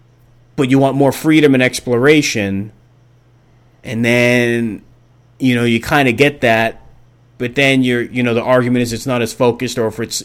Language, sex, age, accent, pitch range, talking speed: English, male, 30-49, American, 110-125 Hz, 175 wpm